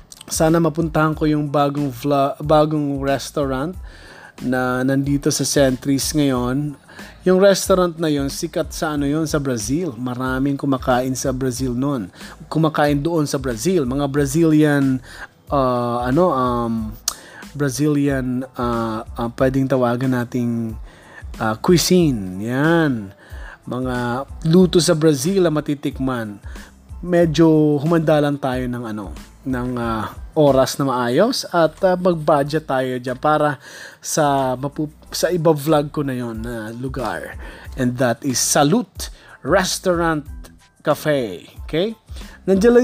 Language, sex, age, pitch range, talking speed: Filipino, male, 20-39, 125-160 Hz, 125 wpm